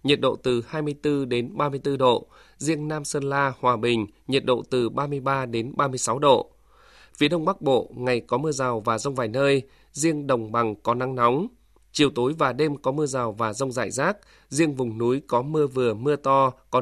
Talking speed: 205 wpm